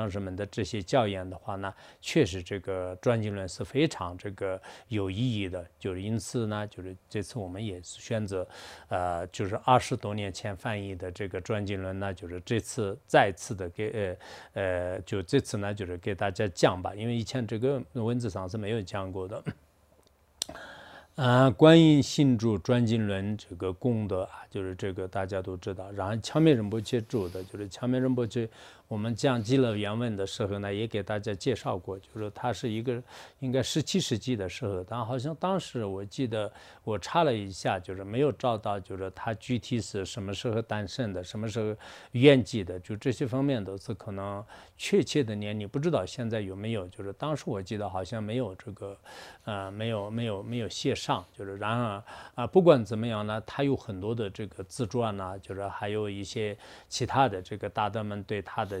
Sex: male